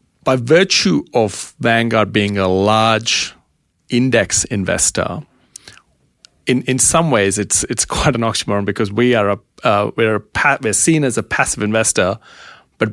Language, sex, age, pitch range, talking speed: English, male, 30-49, 105-130 Hz, 155 wpm